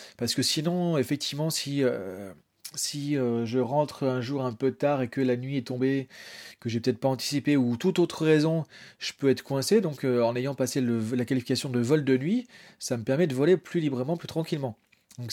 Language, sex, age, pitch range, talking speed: French, male, 30-49, 125-155 Hz, 220 wpm